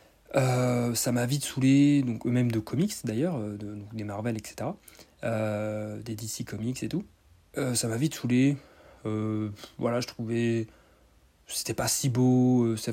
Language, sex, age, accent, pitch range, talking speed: French, male, 30-49, French, 110-130 Hz, 165 wpm